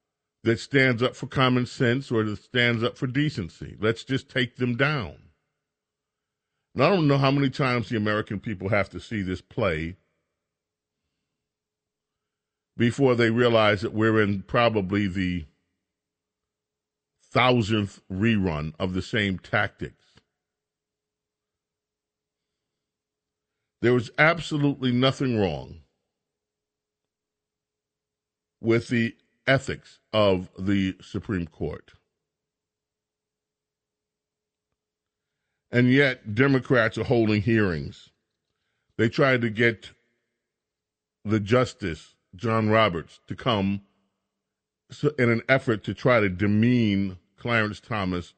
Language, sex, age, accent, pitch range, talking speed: English, male, 50-69, American, 95-125 Hz, 105 wpm